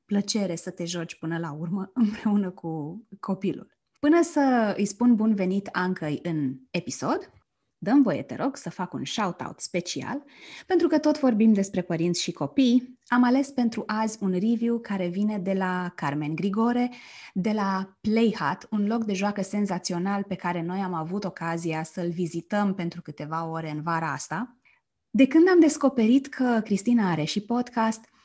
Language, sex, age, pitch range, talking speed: Romanian, female, 20-39, 175-230 Hz, 170 wpm